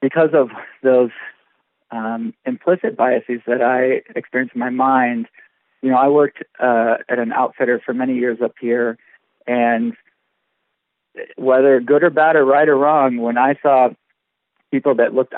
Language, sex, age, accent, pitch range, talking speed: English, male, 40-59, American, 125-150 Hz, 155 wpm